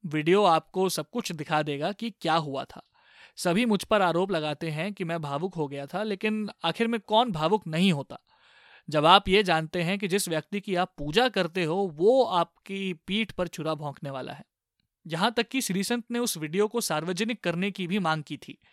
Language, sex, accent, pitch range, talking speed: Hindi, male, native, 165-210 Hz, 210 wpm